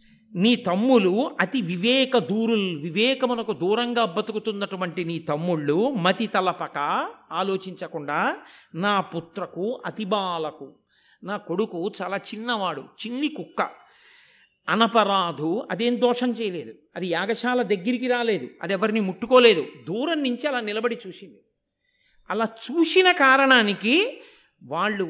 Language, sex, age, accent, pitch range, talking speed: Telugu, male, 50-69, native, 185-250 Hz, 100 wpm